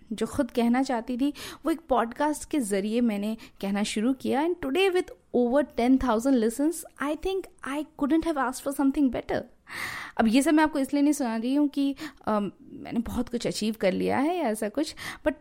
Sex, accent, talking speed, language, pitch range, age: female, native, 205 wpm, Hindi, 215-300 Hz, 20-39